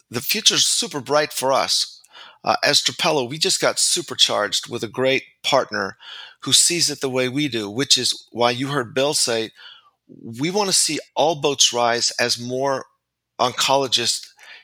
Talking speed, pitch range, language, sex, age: 170 wpm, 125-150 Hz, English, male, 40-59